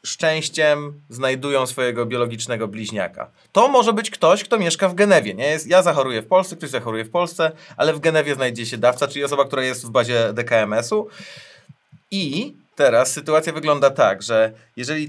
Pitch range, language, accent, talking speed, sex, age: 125-160 Hz, Polish, native, 165 wpm, male, 30-49